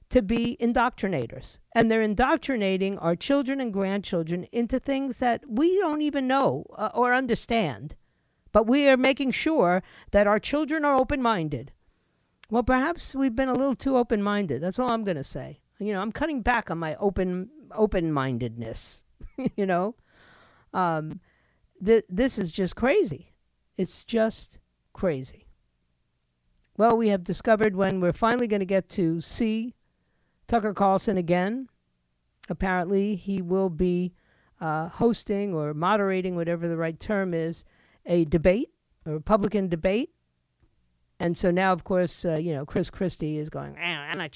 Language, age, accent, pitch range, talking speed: English, 50-69, American, 165-230 Hz, 150 wpm